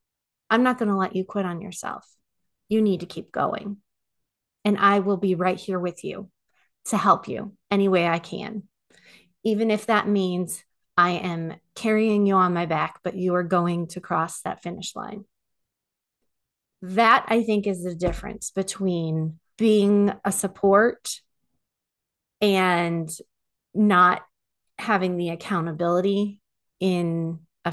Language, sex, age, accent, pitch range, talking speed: English, female, 30-49, American, 175-220 Hz, 145 wpm